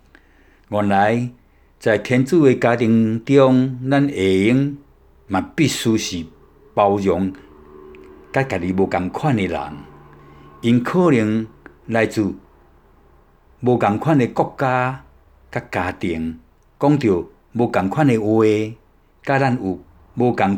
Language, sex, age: Chinese, male, 60-79